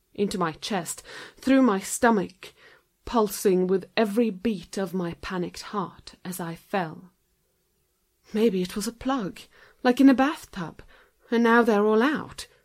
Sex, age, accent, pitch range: female, 30-49, British, 180-240 Hz